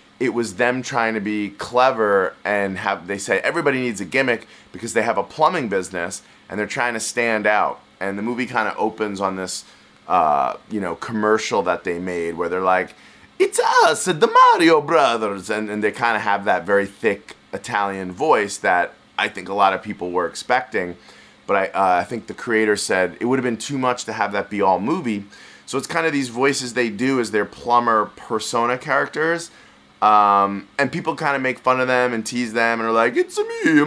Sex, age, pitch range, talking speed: male, 30-49, 105-135 Hz, 220 wpm